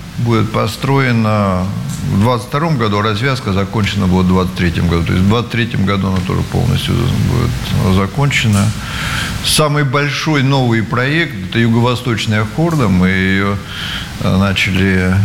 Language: Russian